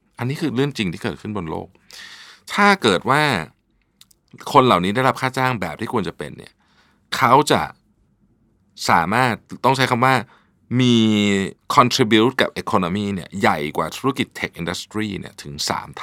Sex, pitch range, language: male, 90-120 Hz, Thai